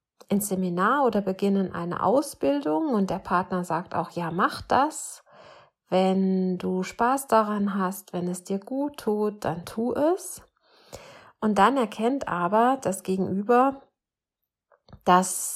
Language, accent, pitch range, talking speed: German, German, 185-220 Hz, 125 wpm